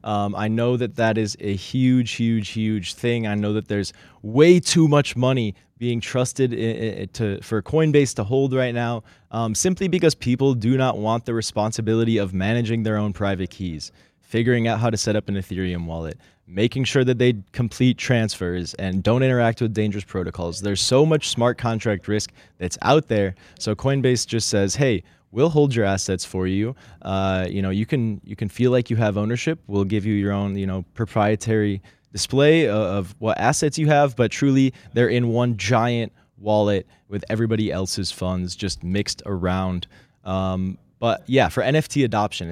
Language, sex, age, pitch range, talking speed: English, male, 20-39, 100-125 Hz, 185 wpm